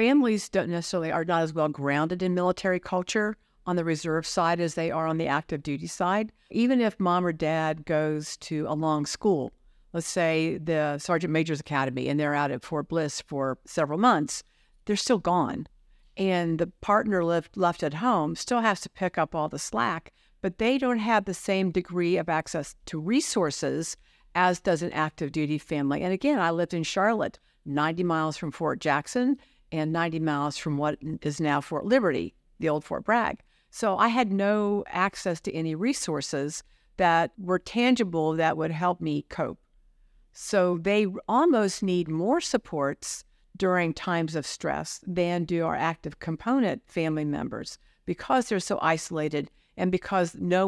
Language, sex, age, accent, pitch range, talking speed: English, female, 50-69, American, 155-195 Hz, 175 wpm